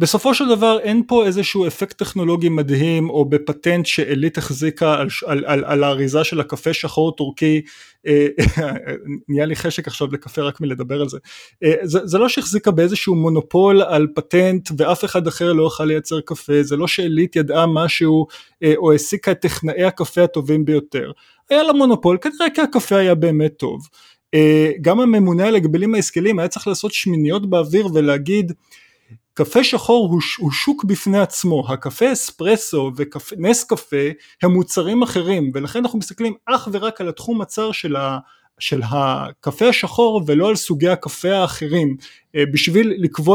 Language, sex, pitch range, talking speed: Hebrew, male, 150-200 Hz, 155 wpm